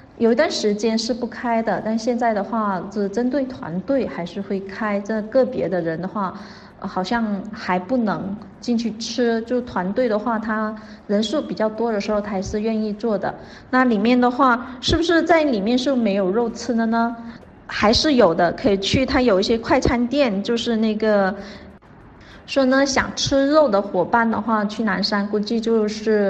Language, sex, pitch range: English, female, 195-245 Hz